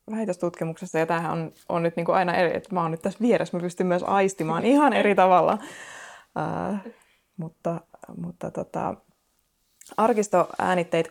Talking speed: 140 wpm